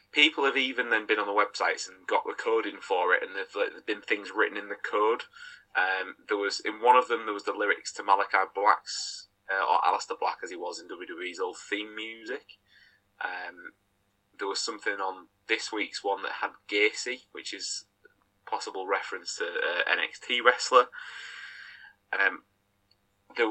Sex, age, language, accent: male, 20-39, English, British